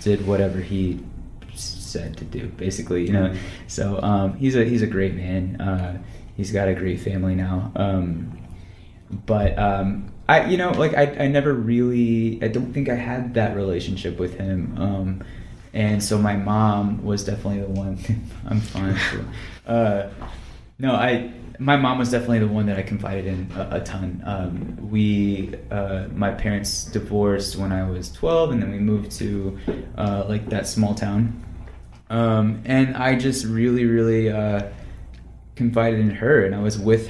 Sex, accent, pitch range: male, American, 95-115 Hz